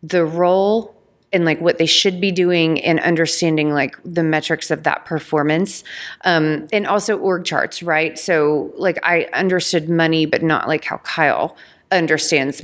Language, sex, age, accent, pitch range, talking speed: English, female, 30-49, American, 150-180 Hz, 160 wpm